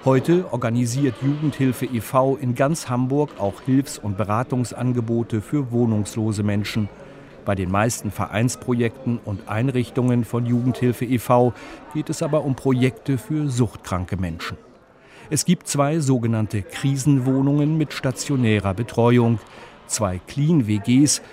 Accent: German